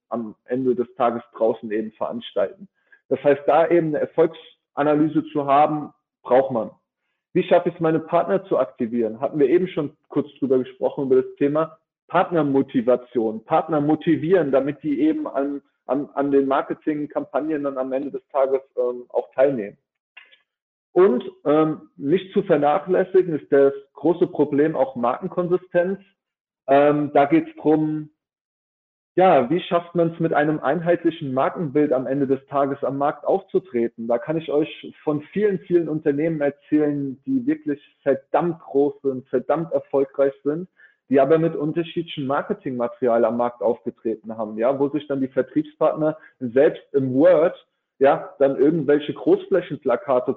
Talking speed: 150 wpm